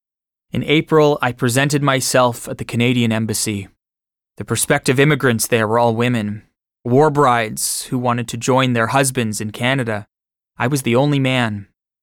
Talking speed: 155 wpm